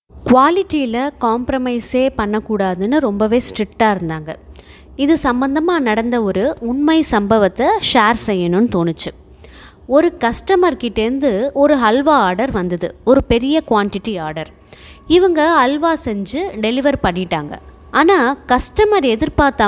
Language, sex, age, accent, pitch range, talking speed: Tamil, female, 20-39, native, 195-285 Hz, 100 wpm